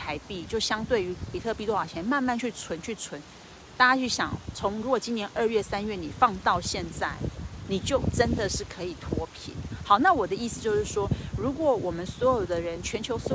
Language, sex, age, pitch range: Chinese, female, 30-49, 200-265 Hz